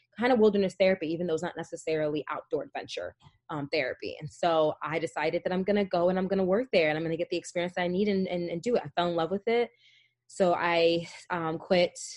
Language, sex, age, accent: English, female, 20-39, American